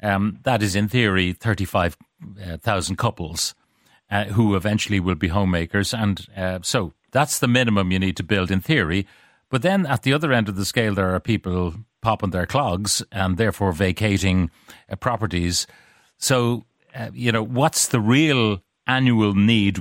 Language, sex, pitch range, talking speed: English, male, 95-120 Hz, 165 wpm